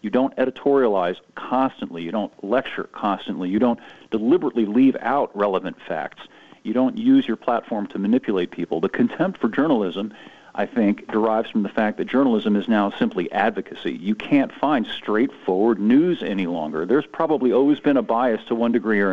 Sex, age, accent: male, 50-69, American